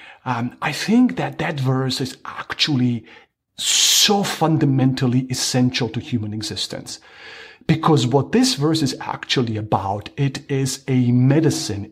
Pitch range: 130-160 Hz